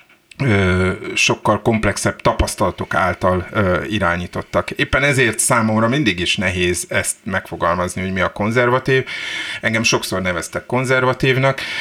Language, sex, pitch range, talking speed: Hungarian, male, 95-120 Hz, 105 wpm